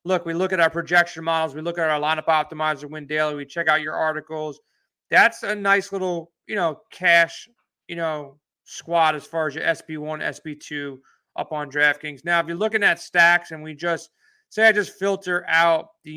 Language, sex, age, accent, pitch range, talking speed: English, male, 30-49, American, 155-180 Hz, 200 wpm